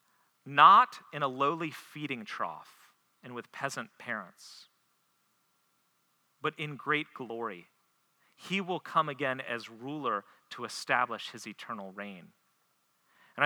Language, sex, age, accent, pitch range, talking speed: English, male, 40-59, American, 140-180 Hz, 115 wpm